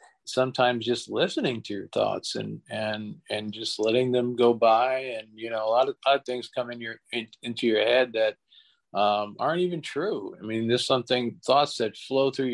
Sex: male